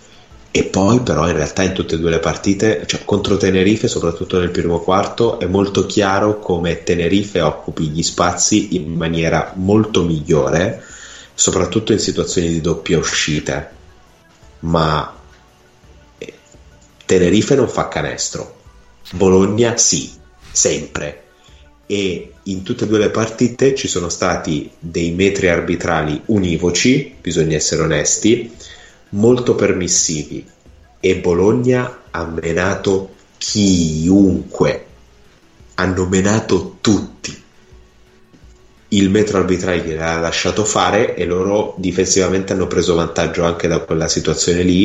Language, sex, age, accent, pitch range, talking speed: Italian, male, 30-49, native, 80-100 Hz, 120 wpm